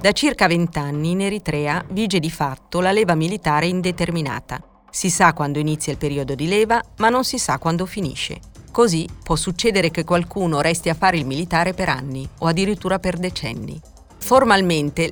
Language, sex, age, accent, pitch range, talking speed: Italian, female, 40-59, native, 155-190 Hz, 170 wpm